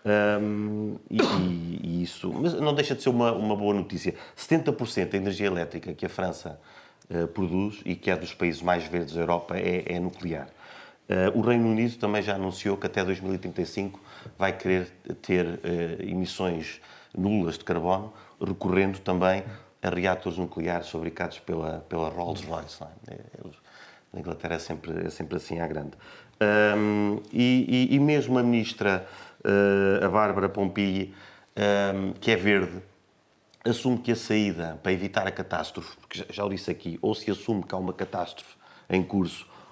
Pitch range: 90-115 Hz